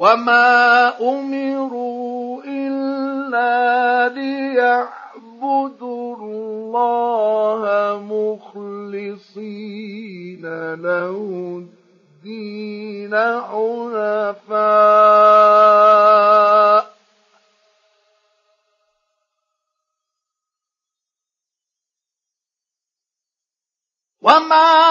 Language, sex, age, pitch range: Arabic, male, 50-69, 225-315 Hz